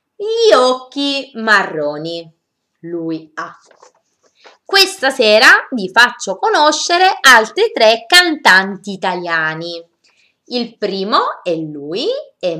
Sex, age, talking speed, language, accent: female, 20-39, 90 wpm, Italian, native